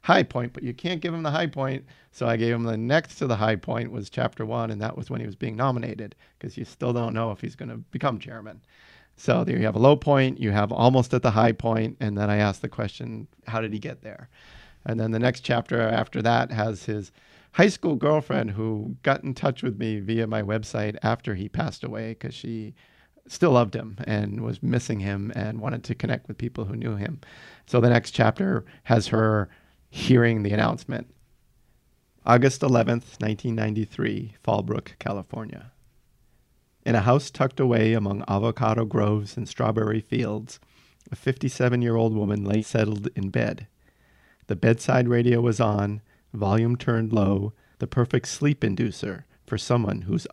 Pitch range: 110-125 Hz